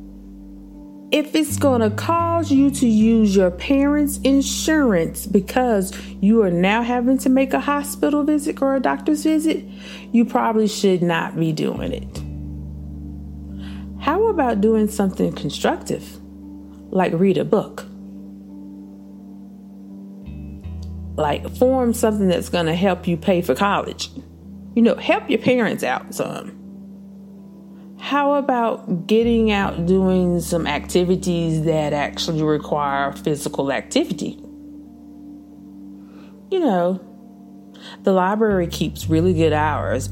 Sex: female